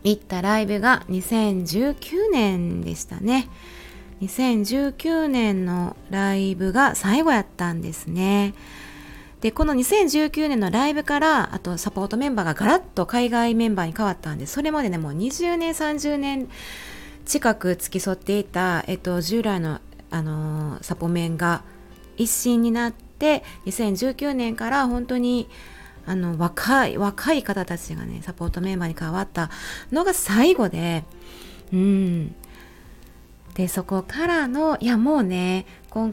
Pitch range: 180-250 Hz